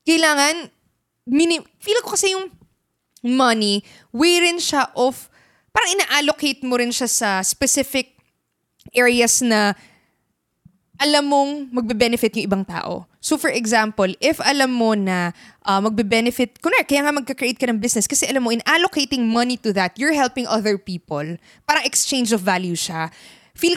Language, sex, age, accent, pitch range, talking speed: Filipino, female, 20-39, native, 205-285 Hz, 150 wpm